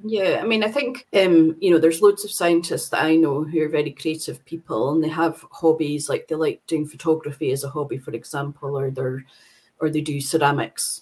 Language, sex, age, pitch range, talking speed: English, female, 30-49, 140-165 Hz, 220 wpm